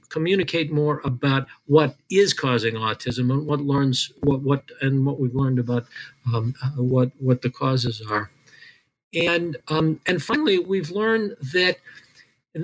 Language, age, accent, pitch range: English, 50-69, American, 135-180 Hz